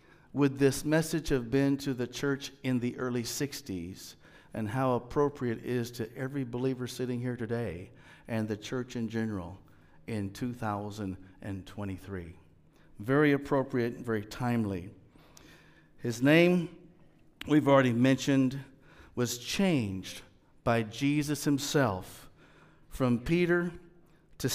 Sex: male